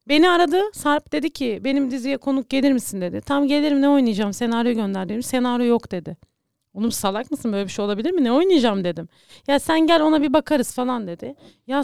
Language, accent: Turkish, native